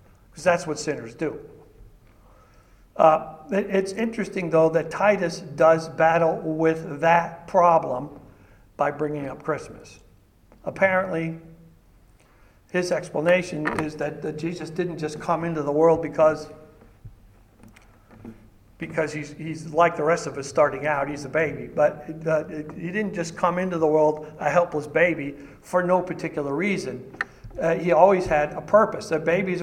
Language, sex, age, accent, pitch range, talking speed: English, male, 60-79, American, 150-210 Hz, 145 wpm